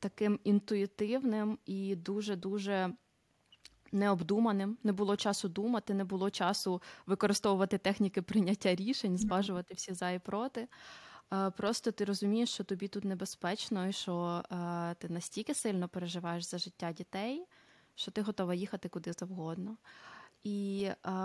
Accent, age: native, 20-39